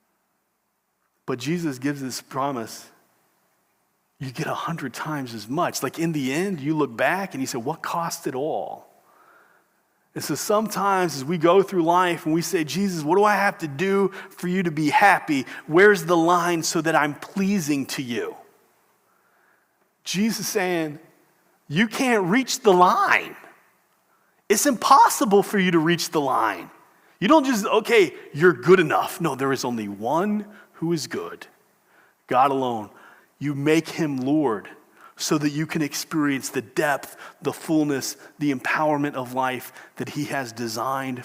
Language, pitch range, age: English, 130-180 Hz, 30-49